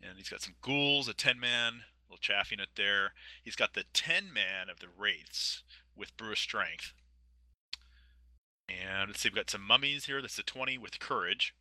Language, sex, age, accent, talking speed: English, male, 30-49, American, 180 wpm